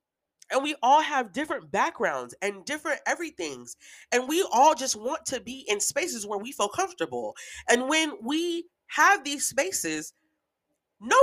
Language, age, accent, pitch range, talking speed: English, 30-49, American, 190-295 Hz, 155 wpm